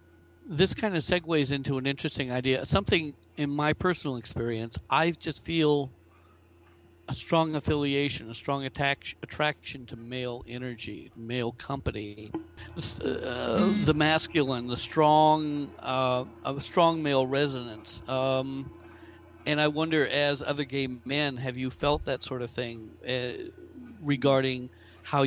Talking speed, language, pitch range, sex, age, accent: 135 wpm, English, 115-145 Hz, male, 60-79, American